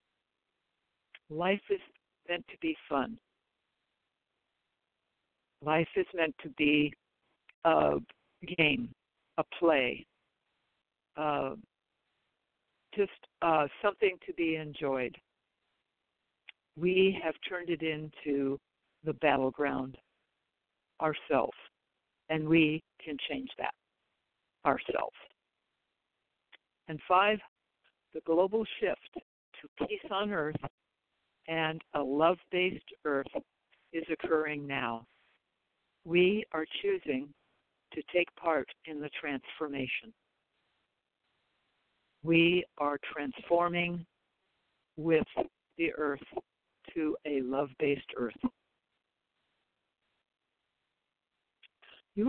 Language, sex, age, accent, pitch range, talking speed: English, female, 60-79, American, 150-185 Hz, 80 wpm